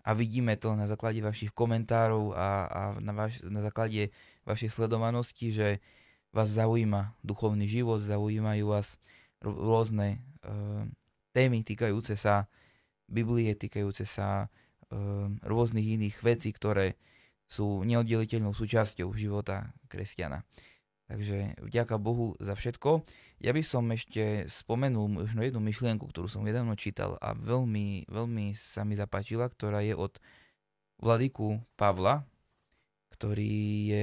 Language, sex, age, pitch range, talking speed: Slovak, male, 20-39, 100-115 Hz, 120 wpm